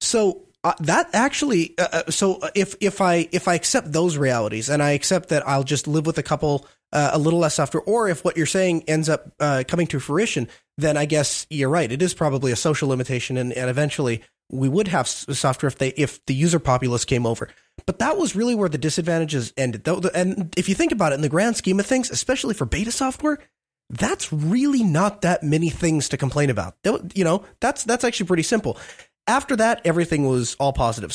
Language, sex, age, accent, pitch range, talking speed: English, male, 20-39, American, 145-195 Hz, 215 wpm